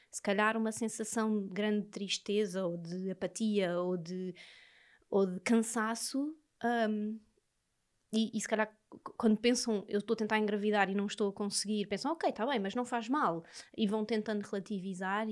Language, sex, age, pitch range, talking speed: Portuguese, female, 20-39, 205-240 Hz, 165 wpm